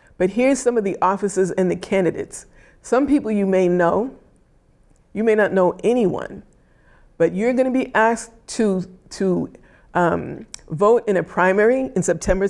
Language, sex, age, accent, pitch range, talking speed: English, female, 50-69, American, 180-220 Hz, 160 wpm